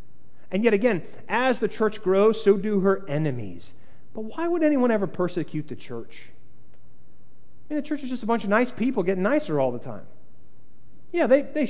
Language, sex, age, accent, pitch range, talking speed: English, male, 30-49, American, 150-210 Hz, 195 wpm